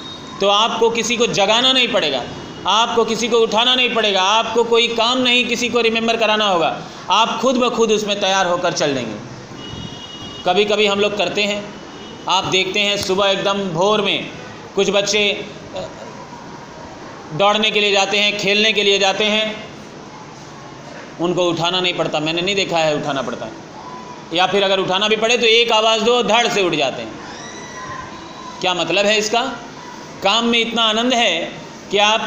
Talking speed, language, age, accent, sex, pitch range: 175 wpm, Hindi, 40-59, native, male, 190-230 Hz